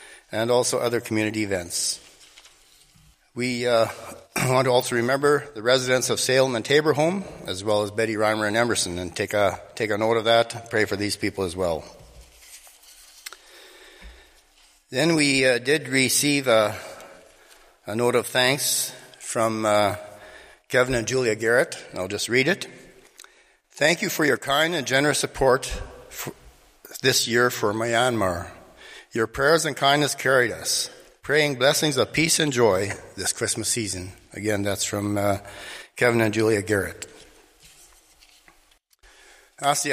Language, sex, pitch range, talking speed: English, male, 100-125 Hz, 145 wpm